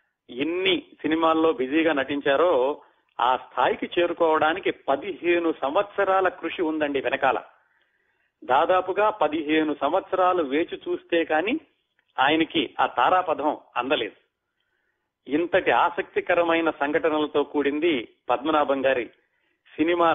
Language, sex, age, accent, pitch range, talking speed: Telugu, male, 40-59, native, 145-200 Hz, 85 wpm